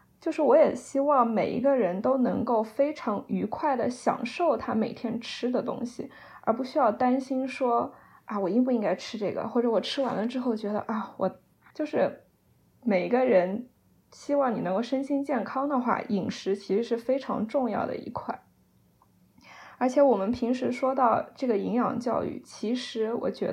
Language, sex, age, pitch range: Chinese, female, 20-39, 225-270 Hz